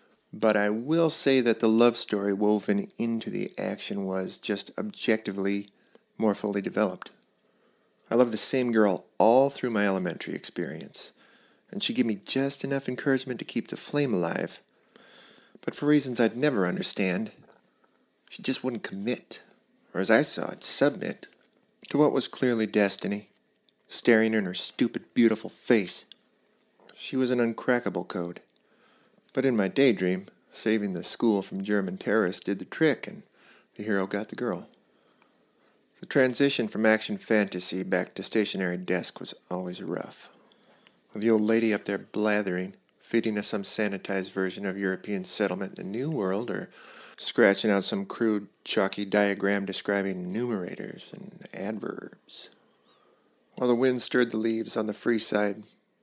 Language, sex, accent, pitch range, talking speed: English, male, American, 100-125 Hz, 155 wpm